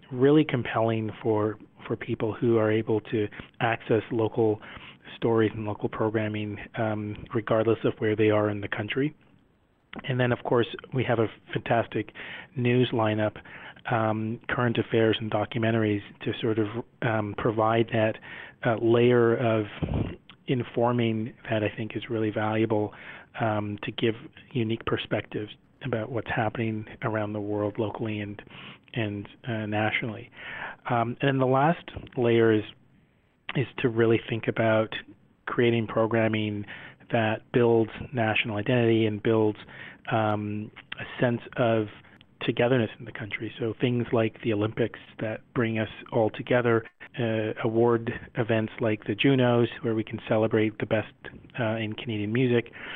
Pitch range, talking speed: 110-120 Hz, 140 wpm